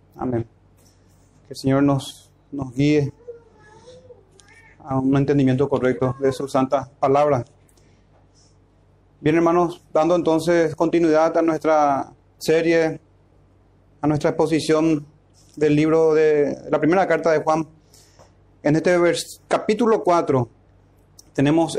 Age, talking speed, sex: 30-49, 105 wpm, male